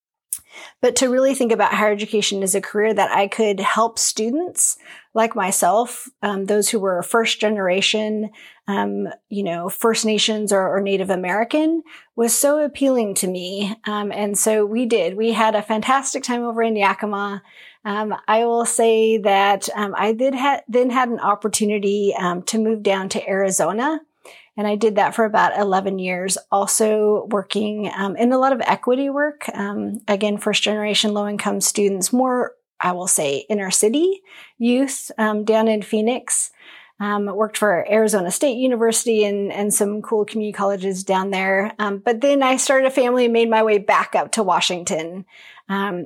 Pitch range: 200-235 Hz